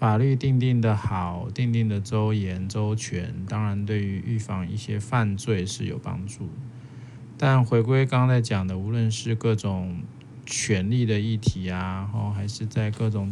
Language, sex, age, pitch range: Chinese, male, 20-39, 105-125 Hz